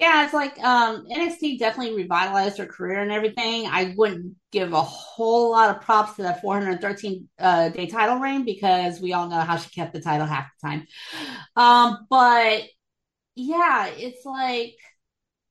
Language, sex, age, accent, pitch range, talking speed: English, female, 30-49, American, 205-285 Hz, 165 wpm